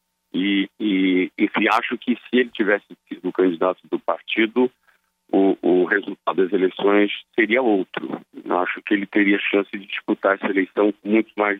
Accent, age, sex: Brazilian, 50-69, male